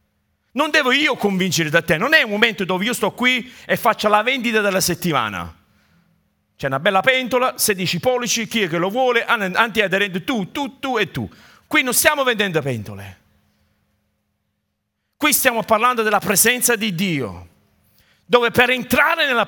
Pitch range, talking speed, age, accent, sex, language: 190-270 Hz, 165 wpm, 40-59, native, male, Italian